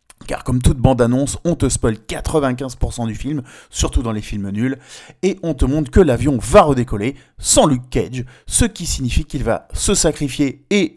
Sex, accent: male, French